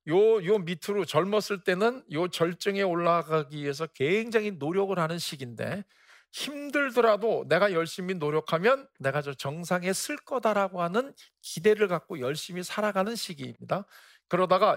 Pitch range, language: 150-210 Hz, Korean